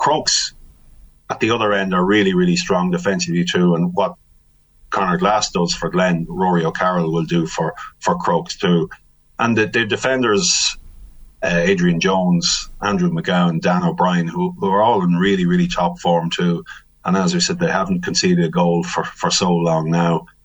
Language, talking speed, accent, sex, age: English, 180 wpm, Irish, male, 30-49